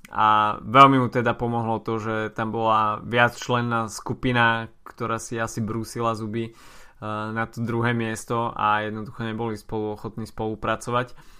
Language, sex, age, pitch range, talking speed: Slovak, male, 20-39, 110-125 Hz, 140 wpm